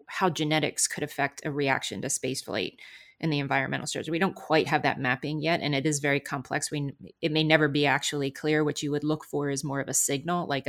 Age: 30-49